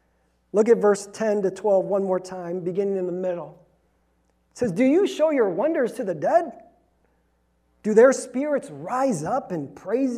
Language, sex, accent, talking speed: English, male, American, 175 wpm